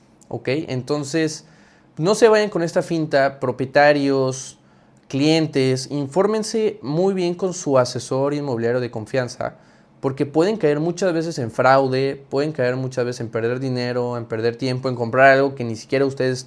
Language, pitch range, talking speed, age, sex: Spanish, 125-155 Hz, 155 wpm, 20-39, male